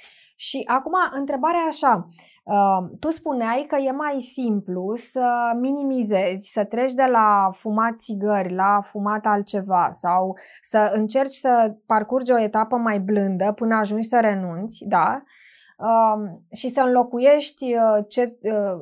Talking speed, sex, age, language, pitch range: 135 wpm, female, 20-39, Romanian, 210-275 Hz